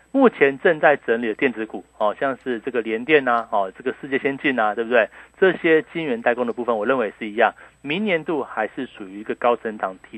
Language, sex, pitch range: Chinese, male, 115-155 Hz